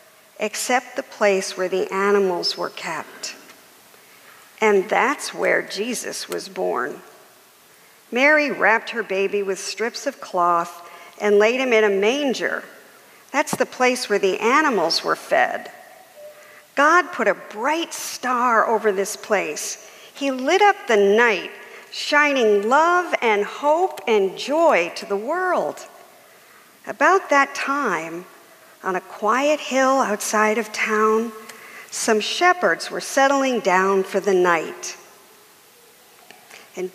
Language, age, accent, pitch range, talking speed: English, 50-69, American, 210-330 Hz, 125 wpm